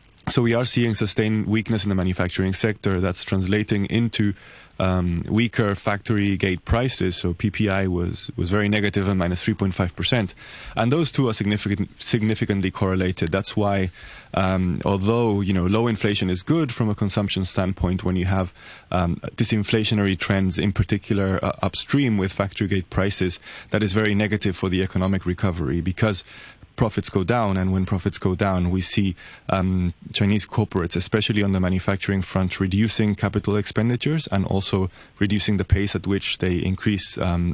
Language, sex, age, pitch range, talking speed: English, male, 20-39, 95-105 Hz, 165 wpm